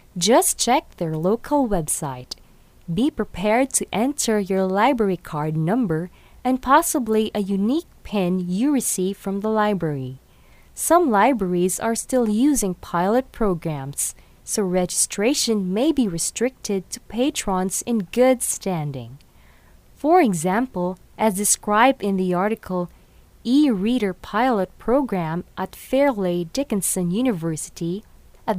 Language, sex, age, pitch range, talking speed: English, female, 20-39, 175-245 Hz, 115 wpm